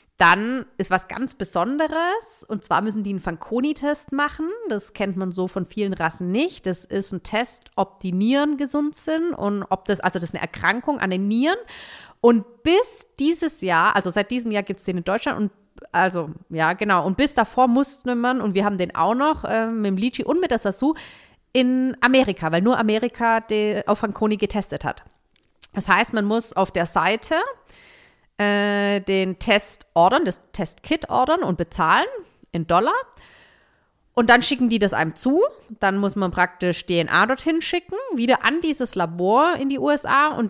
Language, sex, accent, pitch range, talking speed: German, female, German, 185-265 Hz, 185 wpm